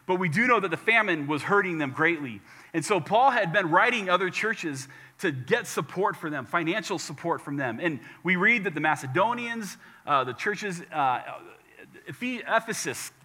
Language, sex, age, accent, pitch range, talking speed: English, male, 30-49, American, 145-210 Hz, 175 wpm